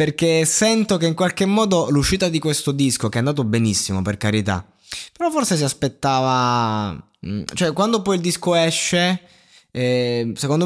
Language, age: Italian, 20-39